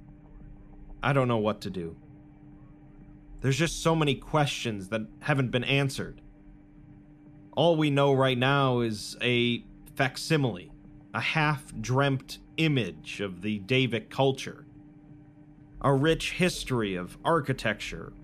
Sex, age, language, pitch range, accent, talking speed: male, 30-49, English, 120-150 Hz, American, 115 wpm